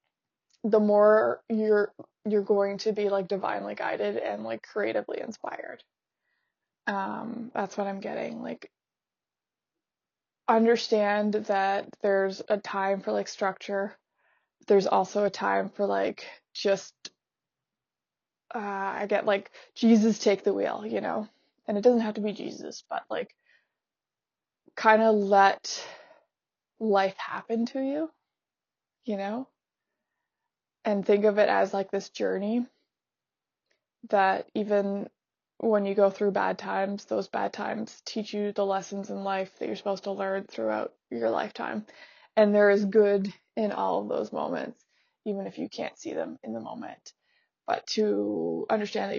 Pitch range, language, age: 195-225 Hz, English, 20-39